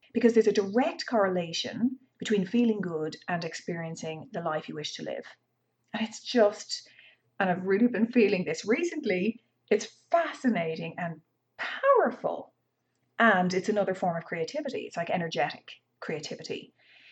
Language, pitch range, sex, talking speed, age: English, 175-240 Hz, female, 140 wpm, 30-49